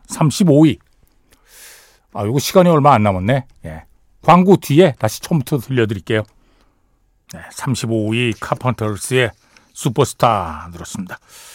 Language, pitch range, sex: Korean, 115-180 Hz, male